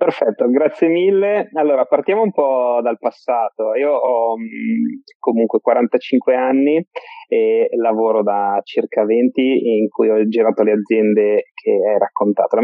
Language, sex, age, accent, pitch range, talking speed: Italian, male, 30-49, native, 110-175 Hz, 140 wpm